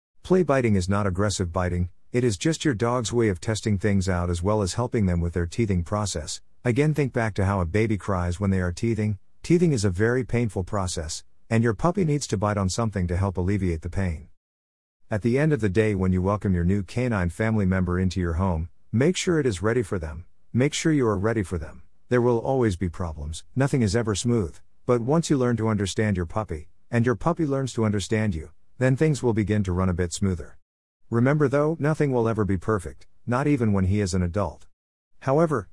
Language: English